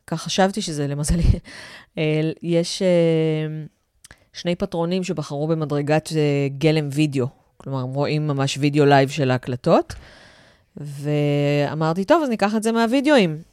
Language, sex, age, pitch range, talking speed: Hebrew, female, 30-49, 135-175 Hz, 130 wpm